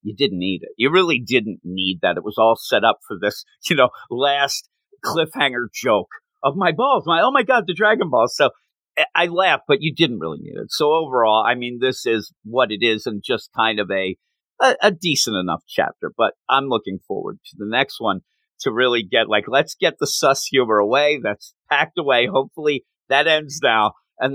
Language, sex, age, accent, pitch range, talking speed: English, male, 50-69, American, 110-155 Hz, 210 wpm